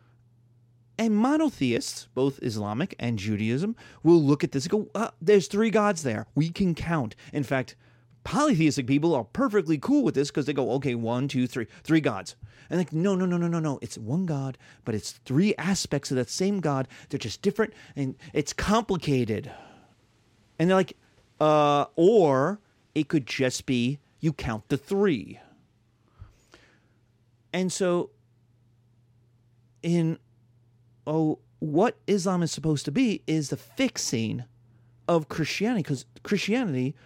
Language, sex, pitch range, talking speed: English, male, 120-160 Hz, 150 wpm